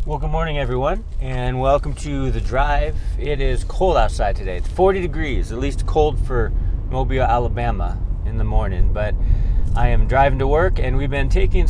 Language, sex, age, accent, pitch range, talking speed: English, male, 30-49, American, 90-125 Hz, 185 wpm